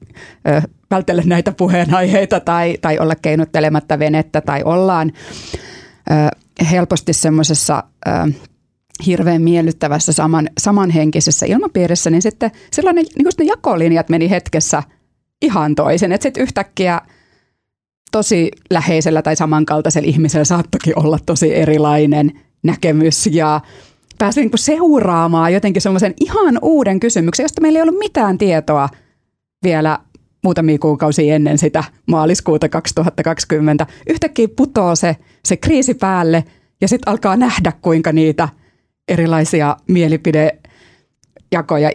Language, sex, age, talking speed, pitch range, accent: Finnish, female, 30-49, 110 wpm, 155-190 Hz, native